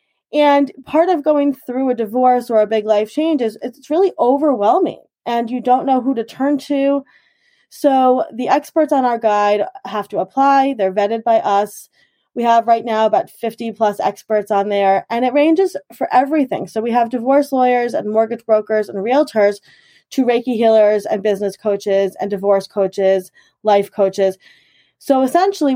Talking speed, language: 175 wpm, English